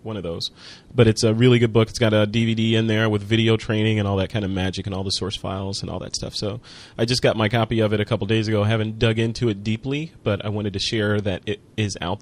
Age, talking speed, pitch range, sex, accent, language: 30-49, 295 wpm, 105-125 Hz, male, American, English